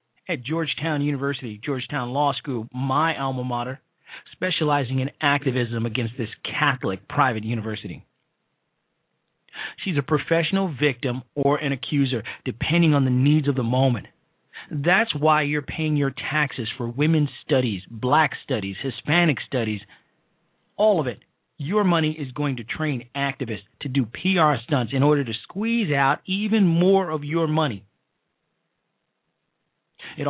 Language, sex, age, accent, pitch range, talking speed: English, male, 40-59, American, 125-160 Hz, 135 wpm